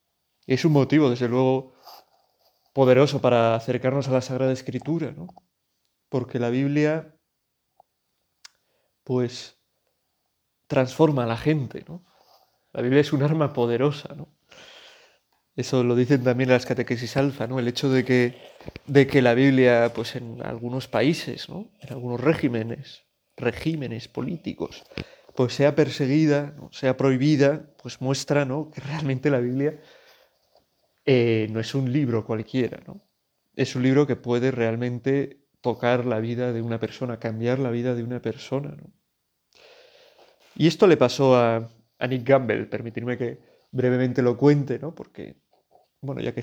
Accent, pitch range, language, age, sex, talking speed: Spanish, 120-145 Hz, Spanish, 30-49, male, 145 wpm